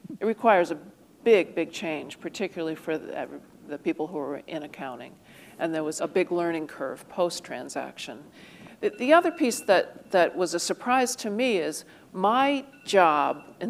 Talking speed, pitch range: 170 wpm, 165-200 Hz